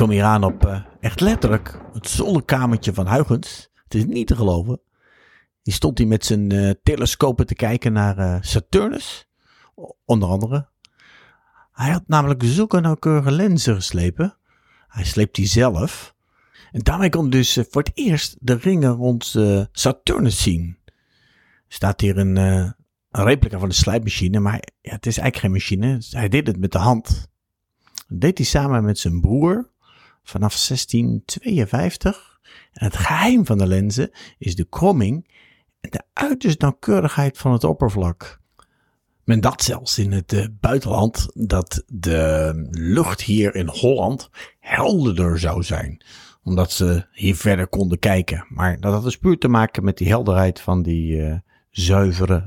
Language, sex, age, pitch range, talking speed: Dutch, male, 50-69, 95-125 Hz, 160 wpm